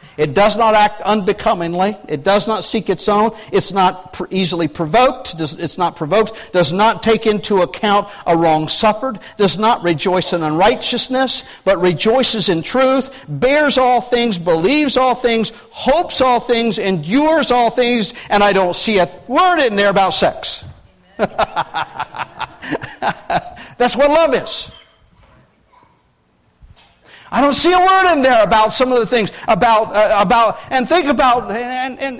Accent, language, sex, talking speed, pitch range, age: American, English, male, 150 wpm, 190-260 Hz, 50-69